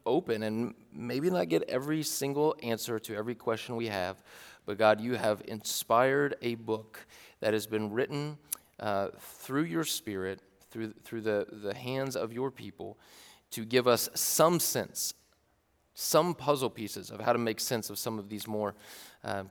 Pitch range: 105-125 Hz